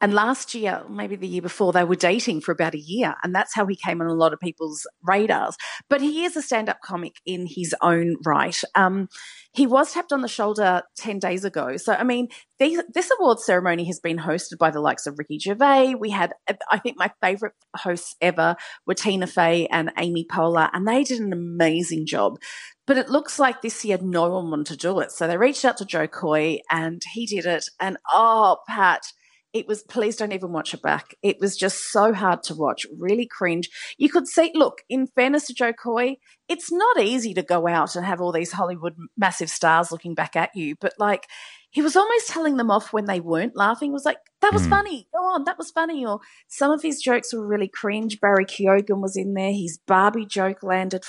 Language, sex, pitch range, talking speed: English, female, 175-255 Hz, 220 wpm